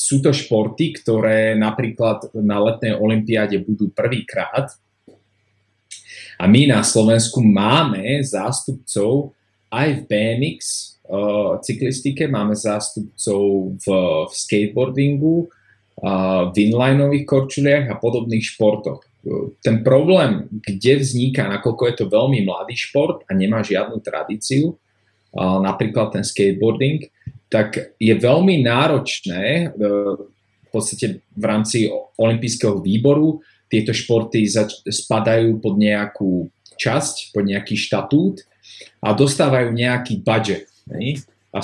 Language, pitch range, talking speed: Slovak, 105-130 Hz, 110 wpm